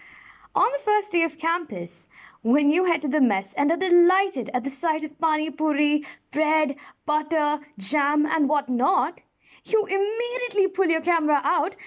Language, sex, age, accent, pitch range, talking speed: English, female, 20-39, Indian, 280-385 Hz, 165 wpm